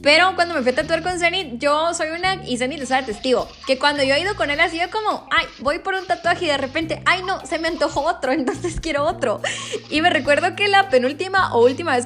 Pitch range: 255-345 Hz